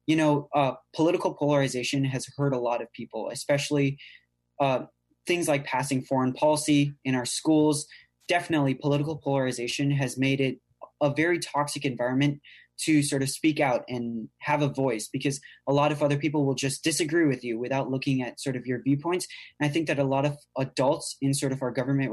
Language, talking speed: English, 195 wpm